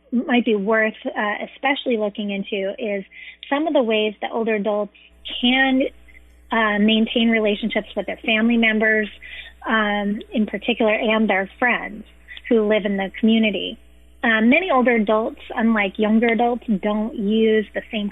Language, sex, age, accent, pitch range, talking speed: English, female, 20-39, American, 205-240 Hz, 150 wpm